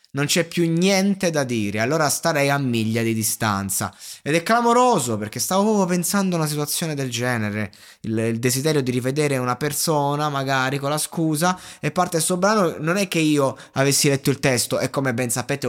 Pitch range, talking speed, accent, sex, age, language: 120-175 Hz, 200 wpm, native, male, 20-39, Italian